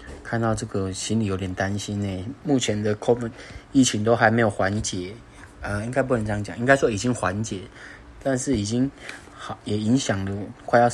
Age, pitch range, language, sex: 20-39, 95-120 Hz, Chinese, male